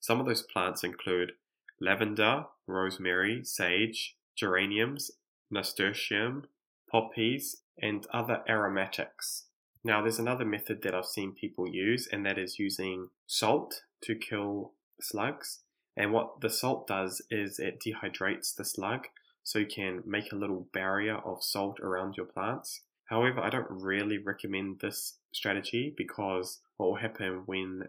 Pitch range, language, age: 95-110 Hz, English, 10-29